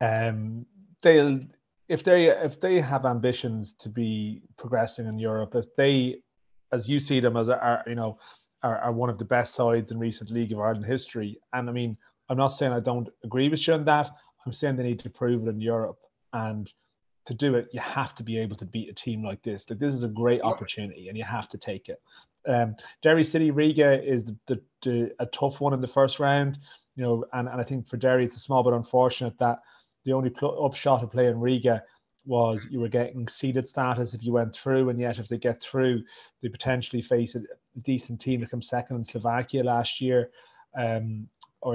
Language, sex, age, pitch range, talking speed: English, male, 30-49, 115-130 Hz, 220 wpm